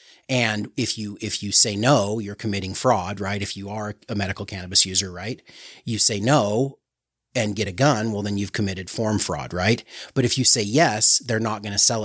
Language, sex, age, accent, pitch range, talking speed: English, male, 30-49, American, 105-120 Hz, 215 wpm